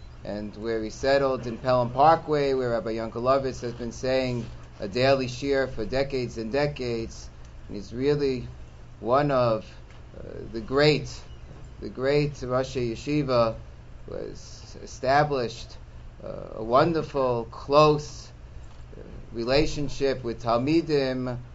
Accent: American